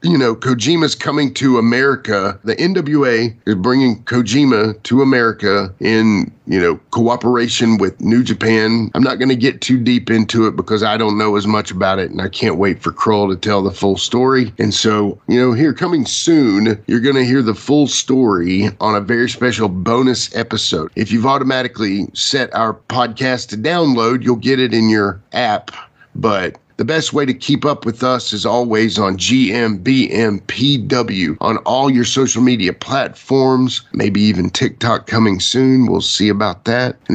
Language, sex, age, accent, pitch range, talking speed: English, male, 40-59, American, 110-130 Hz, 180 wpm